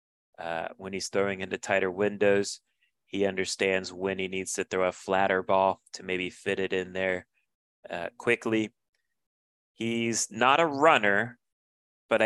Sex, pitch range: male, 95-110 Hz